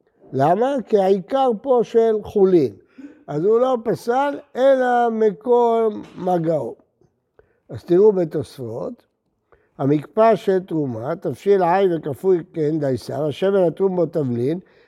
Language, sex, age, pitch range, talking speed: Hebrew, male, 60-79, 155-220 Hz, 115 wpm